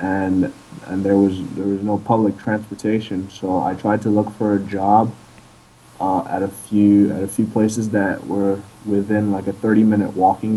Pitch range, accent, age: 95-105 Hz, American, 20-39